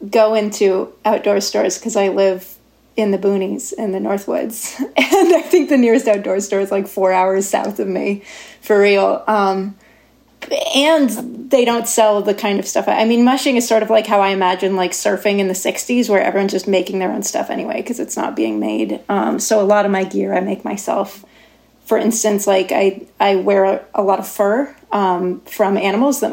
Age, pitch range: 30-49, 195-240 Hz